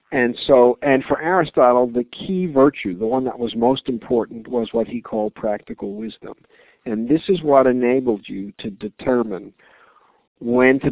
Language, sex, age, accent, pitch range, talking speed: English, male, 50-69, American, 115-135 Hz, 165 wpm